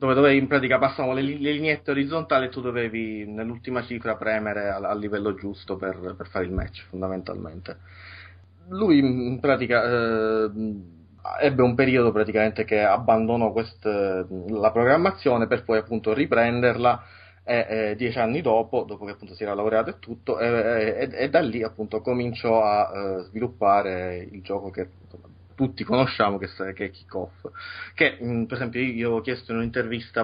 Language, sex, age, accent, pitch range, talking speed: Italian, male, 20-39, native, 100-125 Hz, 160 wpm